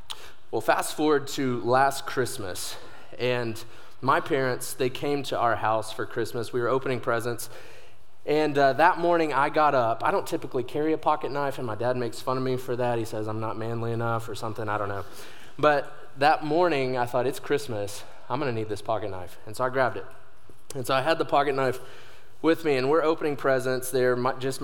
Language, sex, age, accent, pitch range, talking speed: English, male, 20-39, American, 115-140 Hz, 210 wpm